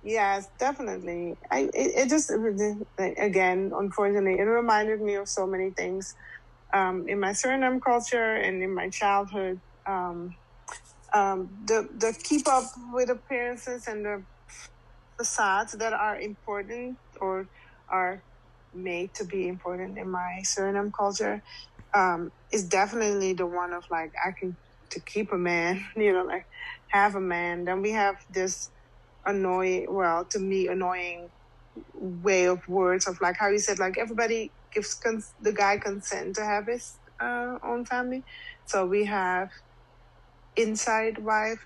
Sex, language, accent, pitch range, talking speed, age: female, English, American, 185-225 Hz, 145 wpm, 30-49